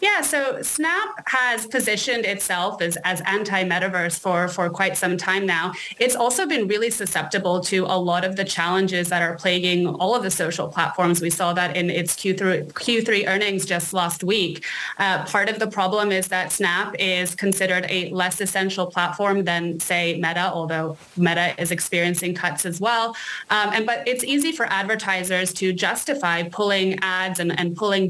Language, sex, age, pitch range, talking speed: English, female, 20-39, 180-215 Hz, 180 wpm